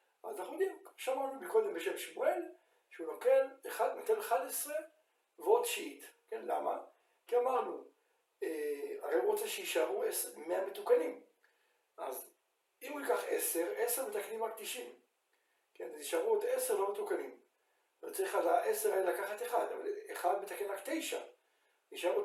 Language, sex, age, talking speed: Hebrew, male, 60-79, 115 wpm